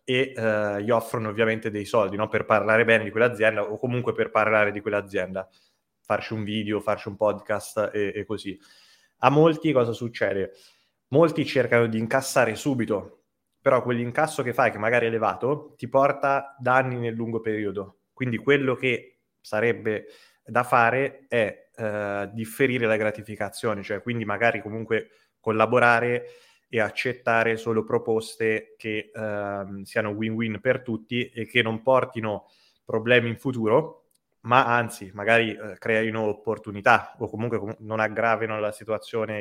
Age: 20-39